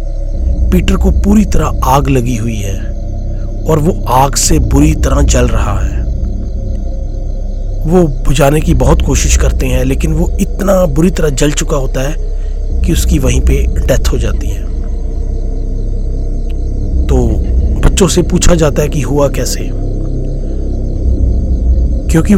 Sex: male